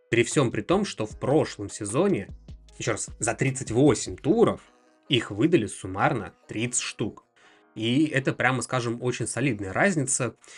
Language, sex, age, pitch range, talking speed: Russian, male, 20-39, 110-140 Hz, 140 wpm